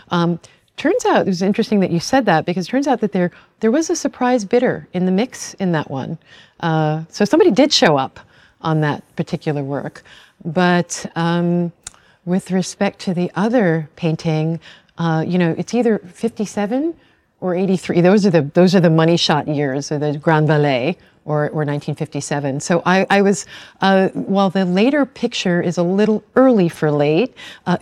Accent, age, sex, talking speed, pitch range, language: American, 40-59, female, 185 wpm, 155-195 Hz, English